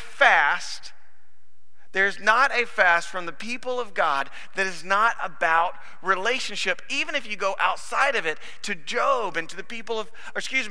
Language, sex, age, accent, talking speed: English, male, 40-59, American, 170 wpm